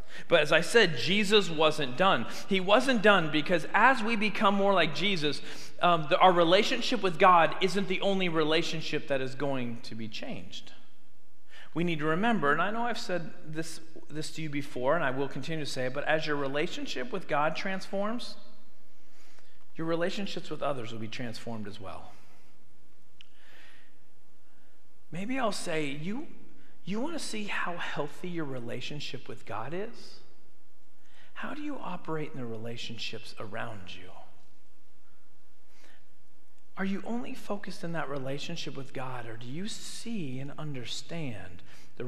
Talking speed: 155 wpm